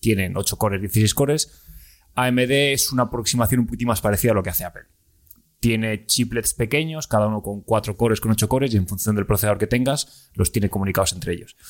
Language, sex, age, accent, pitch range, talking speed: Spanish, male, 20-39, Spanish, 100-120 Hz, 210 wpm